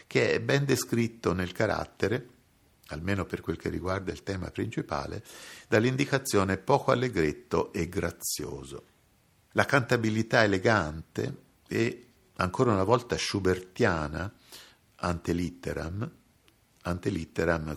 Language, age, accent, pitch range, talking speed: Italian, 50-69, native, 85-115 Hz, 95 wpm